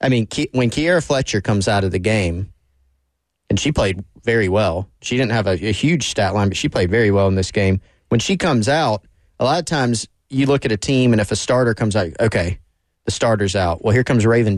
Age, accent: 30-49, American